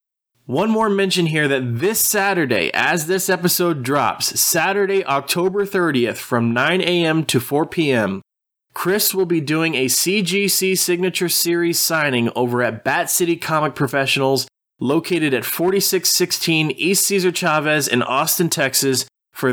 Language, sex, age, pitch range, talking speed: English, male, 20-39, 125-175 Hz, 140 wpm